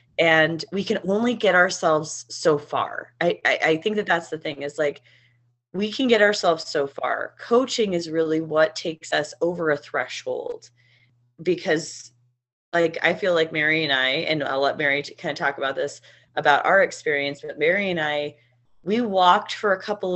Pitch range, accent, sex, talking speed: 140-185 Hz, American, female, 185 wpm